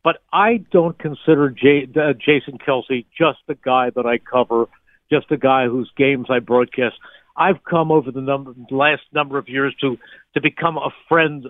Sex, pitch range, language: male, 130-155 Hz, English